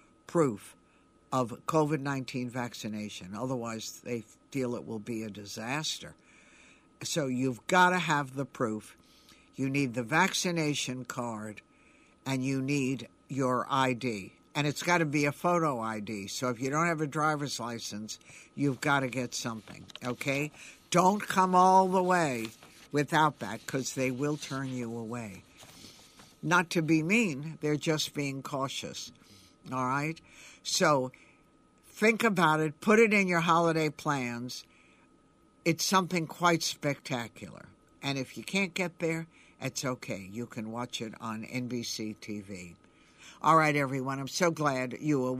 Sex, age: male, 60-79